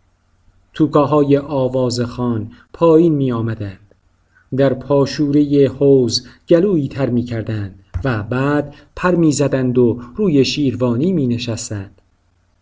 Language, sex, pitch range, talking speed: Persian, male, 100-145 Hz, 100 wpm